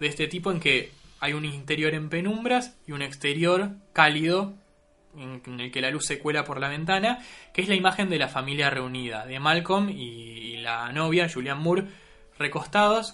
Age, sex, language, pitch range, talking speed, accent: 20-39, male, Spanish, 135-190 Hz, 185 wpm, Argentinian